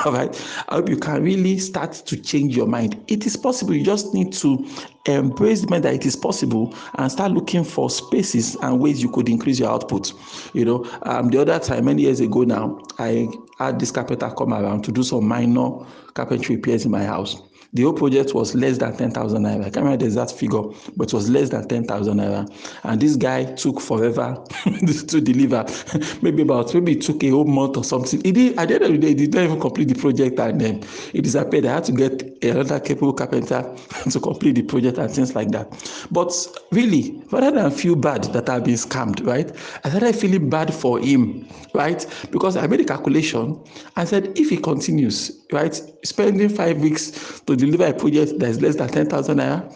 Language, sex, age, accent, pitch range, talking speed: English, male, 50-69, Nigerian, 125-200 Hz, 210 wpm